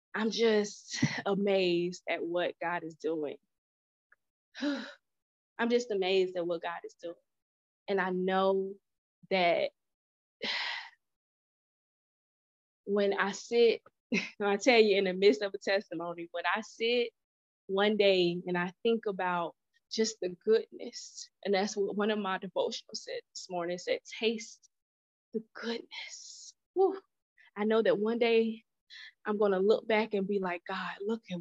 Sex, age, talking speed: female, 20-39, 140 wpm